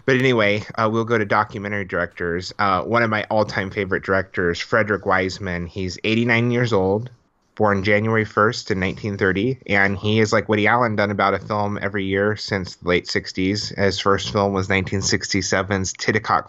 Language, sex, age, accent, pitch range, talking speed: English, male, 30-49, American, 95-105 Hz, 175 wpm